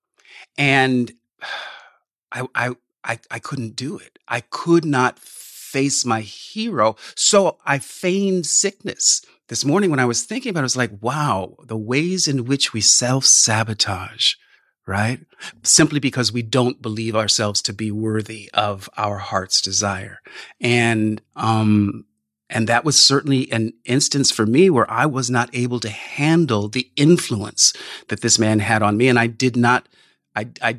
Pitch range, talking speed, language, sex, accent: 110-145 Hz, 160 wpm, English, male, American